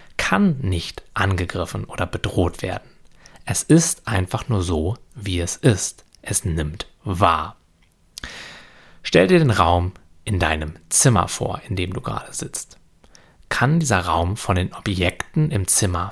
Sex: male